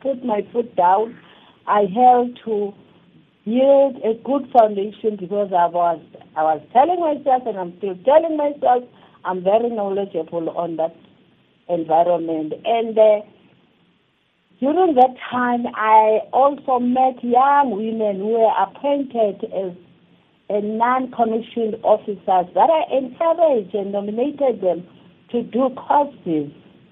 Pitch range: 195-255 Hz